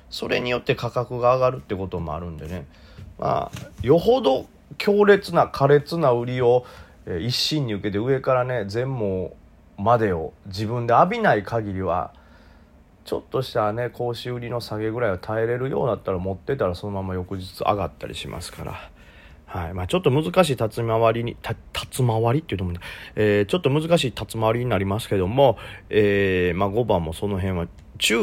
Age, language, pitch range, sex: 30-49, Japanese, 95-140 Hz, male